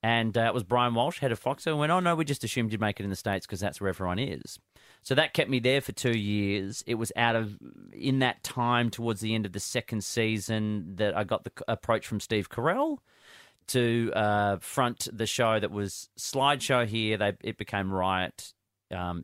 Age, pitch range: 30-49, 100-120 Hz